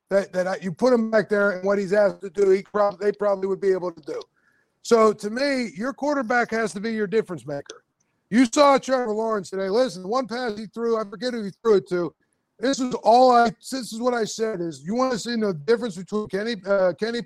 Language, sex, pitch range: English, male, 195-245 Hz